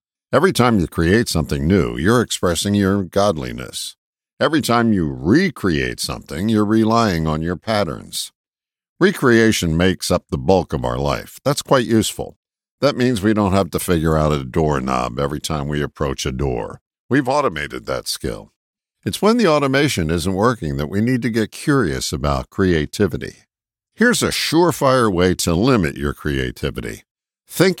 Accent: American